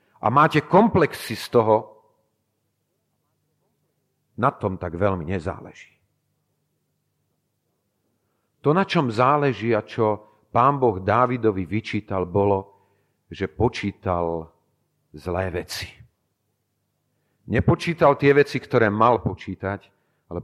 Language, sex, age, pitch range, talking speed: Slovak, male, 40-59, 100-130 Hz, 95 wpm